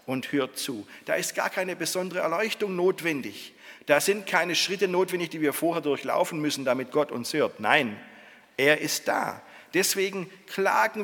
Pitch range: 150-215 Hz